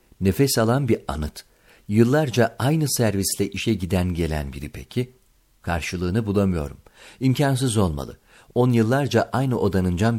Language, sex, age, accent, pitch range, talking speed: Turkish, male, 50-69, native, 85-120 Hz, 125 wpm